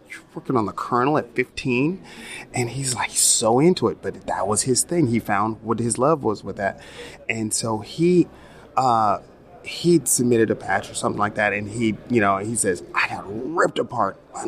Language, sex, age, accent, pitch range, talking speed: English, male, 30-49, American, 110-125 Hz, 200 wpm